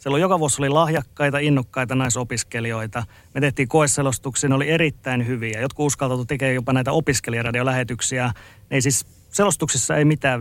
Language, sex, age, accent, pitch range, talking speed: Finnish, male, 30-49, native, 120-150 Hz, 140 wpm